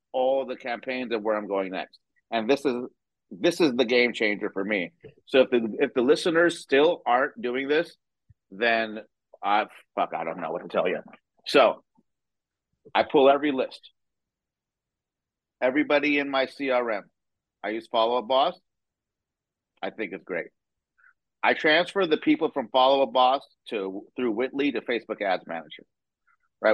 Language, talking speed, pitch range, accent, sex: English, 160 wpm, 110-145 Hz, American, male